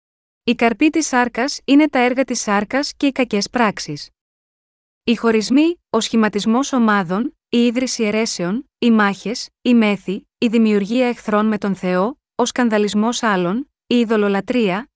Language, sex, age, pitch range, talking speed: Greek, female, 20-39, 200-250 Hz, 145 wpm